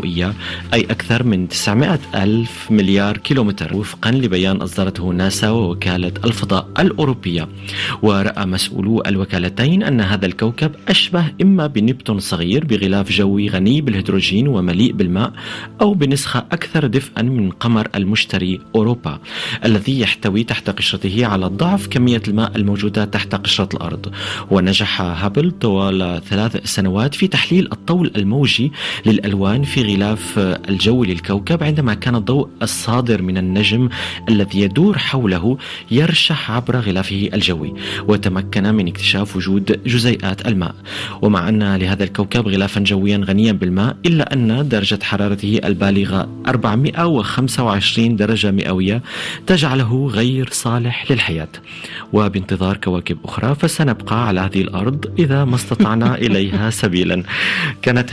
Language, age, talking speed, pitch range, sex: Arabic, 30-49, 120 wpm, 95-125 Hz, male